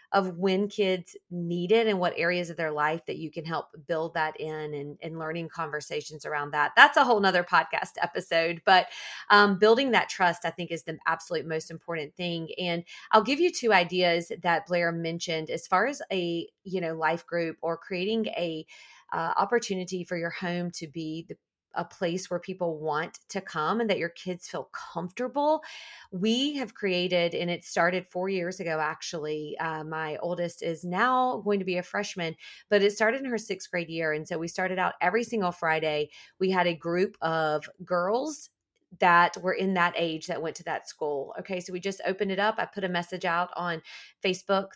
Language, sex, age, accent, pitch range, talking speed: English, female, 30-49, American, 170-220 Hz, 200 wpm